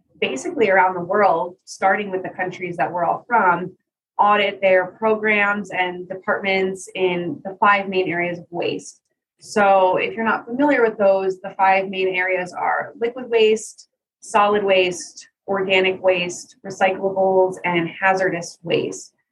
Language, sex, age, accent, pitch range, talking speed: English, female, 20-39, American, 185-210 Hz, 145 wpm